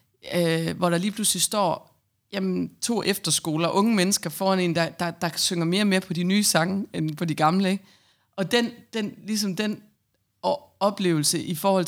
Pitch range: 155-185 Hz